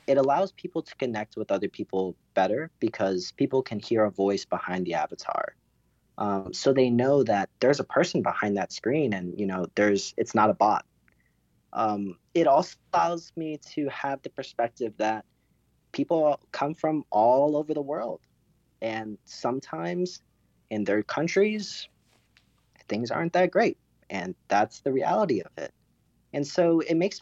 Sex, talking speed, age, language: male, 160 wpm, 30-49, English